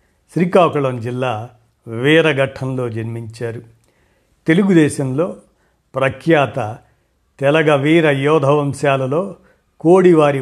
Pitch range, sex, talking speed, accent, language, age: 125-155 Hz, male, 65 wpm, native, Telugu, 50-69